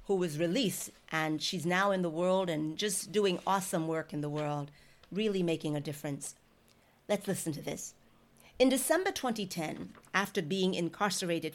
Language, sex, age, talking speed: English, female, 40-59, 155 wpm